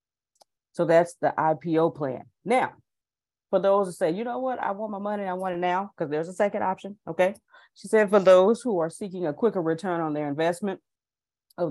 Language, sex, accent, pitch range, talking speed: English, female, American, 150-185 Hz, 215 wpm